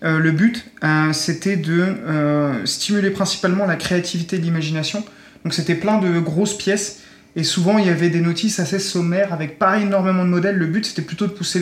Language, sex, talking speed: French, male, 200 wpm